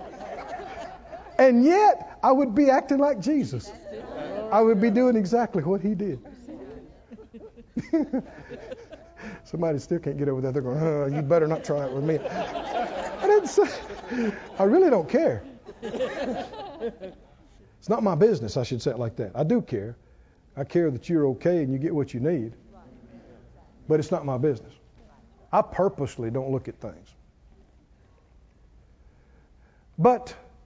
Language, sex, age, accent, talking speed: English, male, 50-69, American, 145 wpm